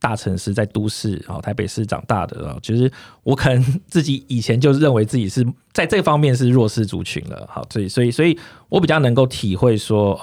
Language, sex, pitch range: Chinese, male, 105-135 Hz